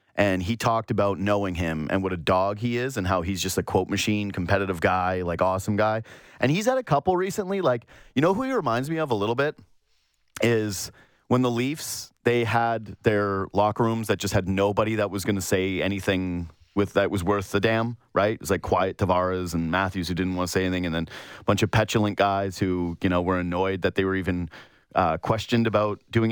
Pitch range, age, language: 95-120 Hz, 30-49, English